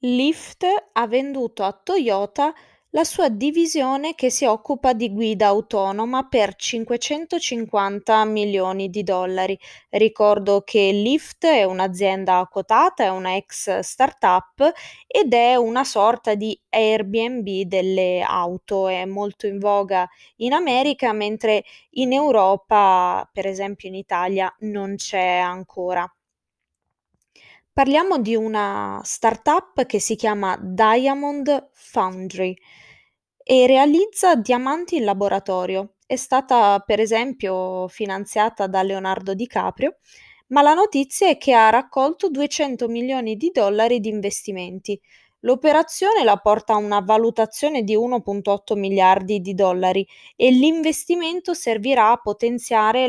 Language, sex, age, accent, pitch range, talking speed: Italian, female, 20-39, native, 195-265 Hz, 120 wpm